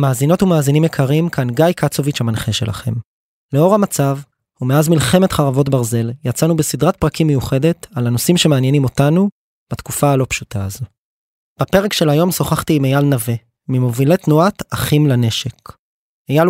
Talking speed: 140 wpm